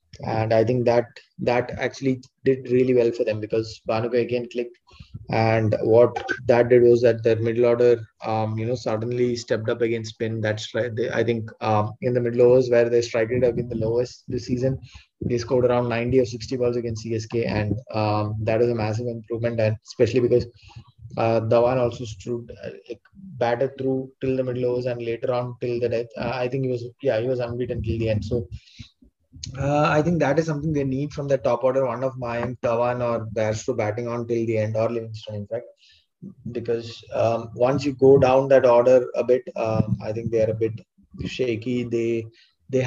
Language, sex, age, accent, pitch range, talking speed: English, male, 20-39, Indian, 110-125 Hz, 205 wpm